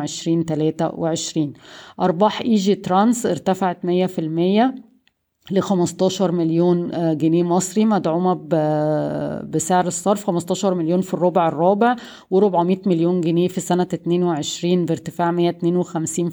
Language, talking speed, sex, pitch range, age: Arabic, 125 wpm, female, 170-190 Hz, 20-39